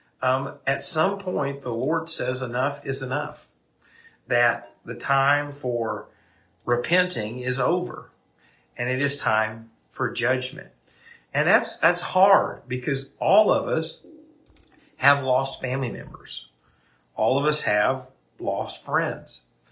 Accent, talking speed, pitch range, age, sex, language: American, 125 wpm, 115-155 Hz, 50-69, male, English